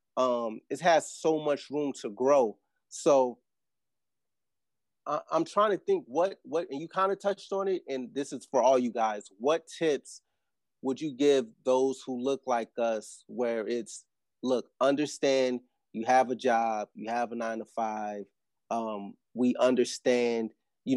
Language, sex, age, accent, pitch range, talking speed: English, male, 30-49, American, 115-140 Hz, 165 wpm